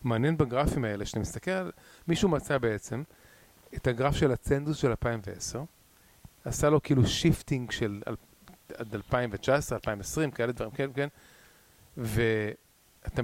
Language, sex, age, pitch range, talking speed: Hebrew, male, 30-49, 115-150 Hz, 120 wpm